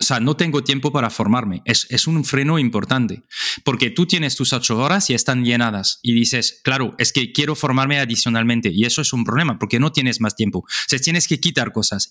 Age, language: 30-49, Spanish